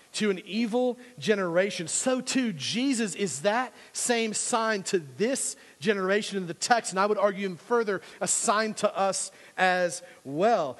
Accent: American